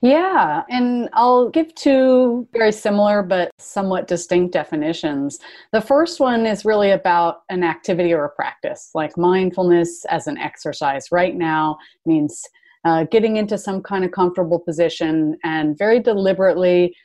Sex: female